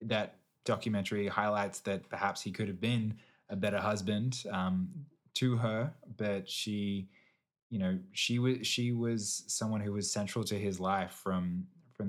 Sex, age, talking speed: male, 20-39, 160 wpm